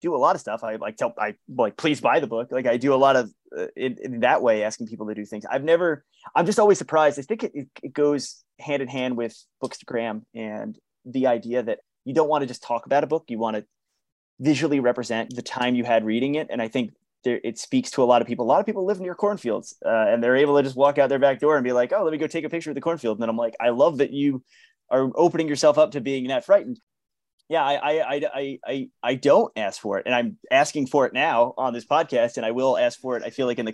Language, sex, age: English, male, 20-39